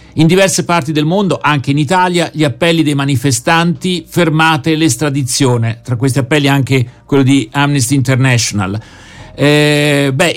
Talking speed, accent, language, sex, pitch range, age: 140 wpm, native, Italian, male, 130-165 Hz, 50-69